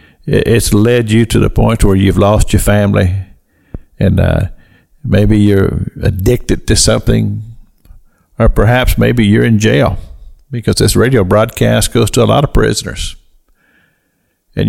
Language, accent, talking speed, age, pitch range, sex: English, American, 145 wpm, 50-69, 95-125 Hz, male